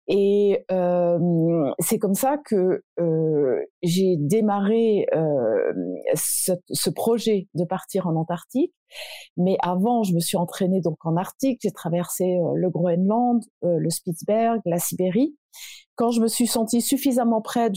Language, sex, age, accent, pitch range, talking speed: French, female, 30-49, French, 190-235 Hz, 145 wpm